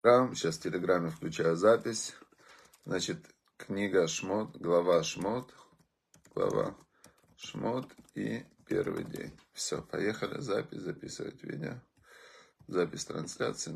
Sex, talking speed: male, 95 wpm